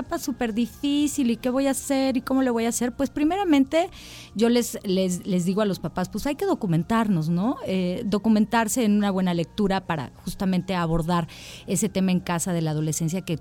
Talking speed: 200 wpm